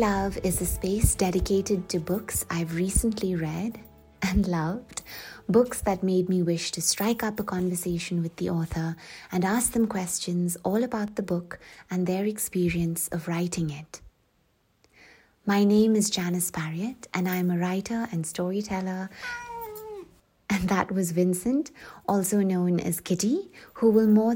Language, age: English, 20-39